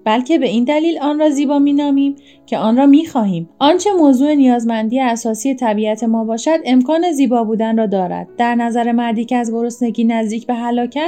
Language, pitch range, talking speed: Persian, 230-280 Hz, 180 wpm